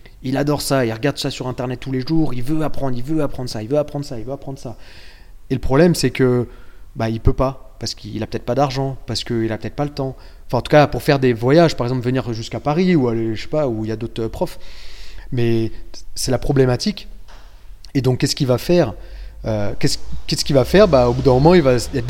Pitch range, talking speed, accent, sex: 110-135 Hz, 260 wpm, French, male